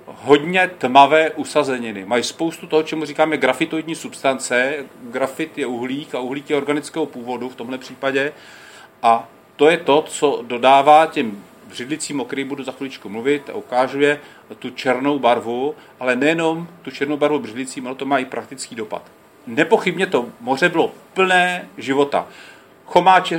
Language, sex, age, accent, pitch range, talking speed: Czech, male, 40-59, native, 125-150 Hz, 145 wpm